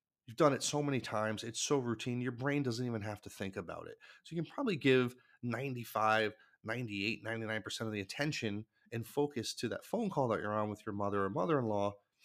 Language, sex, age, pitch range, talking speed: English, male, 30-49, 105-135 Hz, 200 wpm